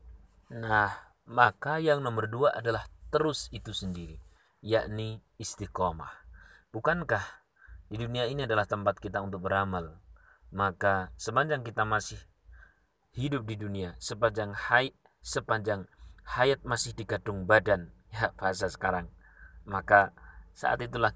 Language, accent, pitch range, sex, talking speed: Indonesian, native, 95-115 Hz, male, 110 wpm